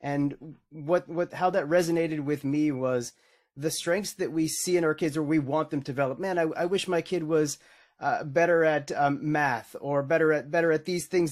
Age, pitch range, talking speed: 30-49, 145-175 Hz, 225 wpm